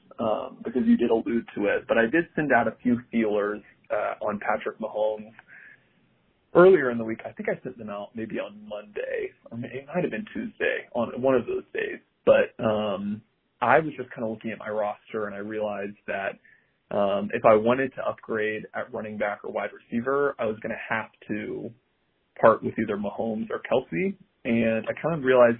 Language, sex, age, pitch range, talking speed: English, male, 20-39, 110-145 Hz, 200 wpm